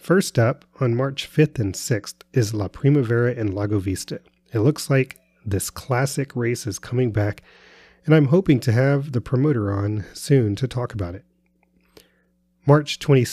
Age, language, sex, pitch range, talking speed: 30-49, English, male, 105-135 Hz, 160 wpm